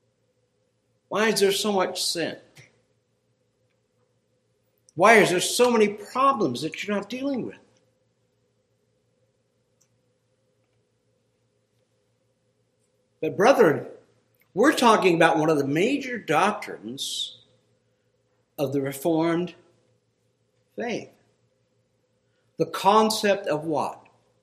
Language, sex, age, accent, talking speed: English, male, 60-79, American, 85 wpm